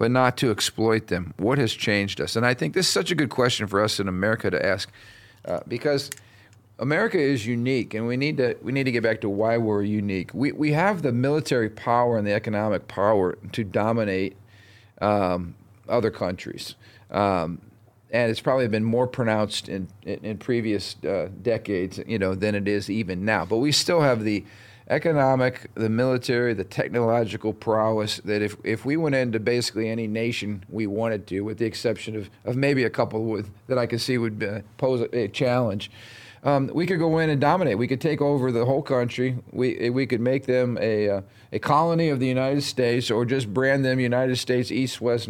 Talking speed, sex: 205 wpm, male